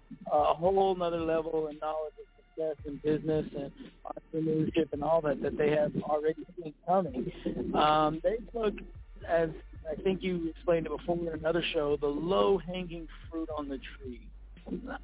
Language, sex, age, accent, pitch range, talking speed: English, male, 50-69, American, 145-175 Hz, 165 wpm